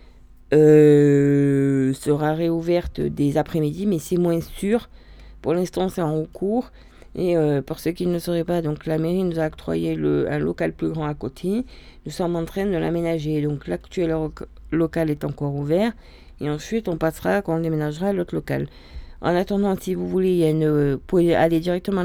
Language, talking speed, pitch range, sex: French, 185 wpm, 130-175 Hz, female